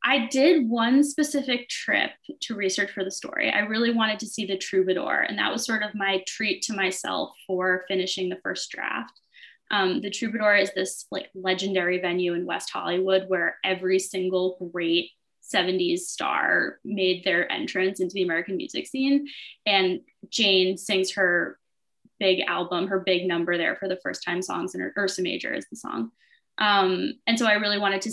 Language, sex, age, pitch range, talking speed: English, female, 20-39, 185-220 Hz, 180 wpm